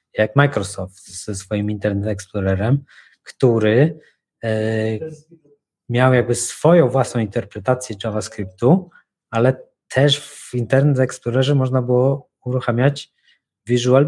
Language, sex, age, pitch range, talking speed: Polish, male, 20-39, 105-130 Hz, 95 wpm